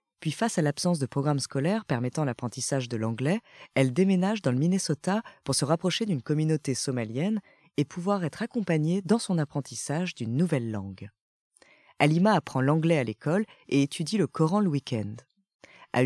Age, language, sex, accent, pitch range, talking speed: 20-39, French, female, French, 135-190 Hz, 165 wpm